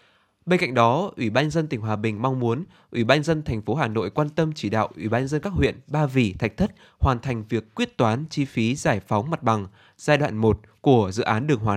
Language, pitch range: Vietnamese, 110-145 Hz